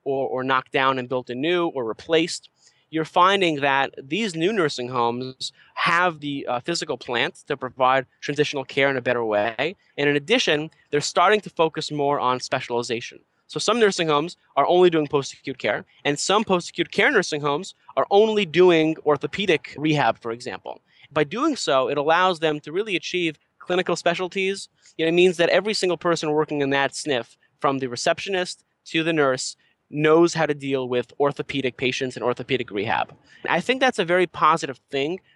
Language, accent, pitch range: English, American, 135-170 Hz